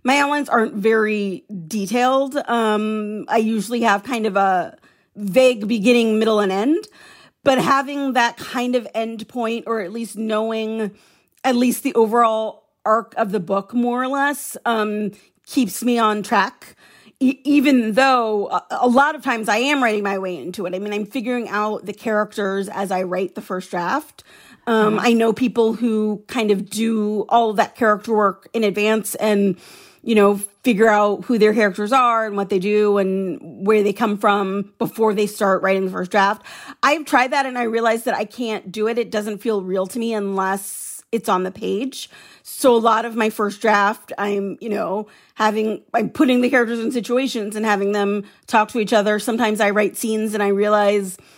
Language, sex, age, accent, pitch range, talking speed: English, female, 40-59, American, 205-235 Hz, 190 wpm